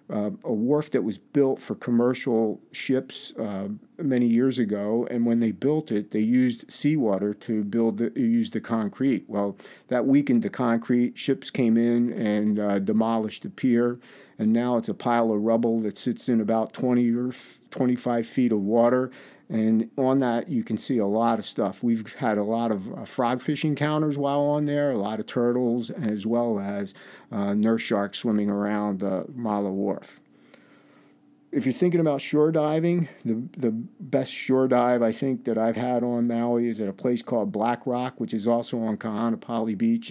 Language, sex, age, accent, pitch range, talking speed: English, male, 50-69, American, 110-130 Hz, 190 wpm